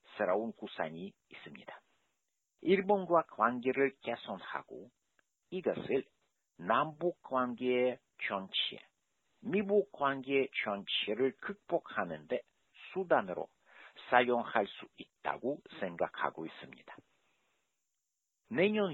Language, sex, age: Korean, male, 50-69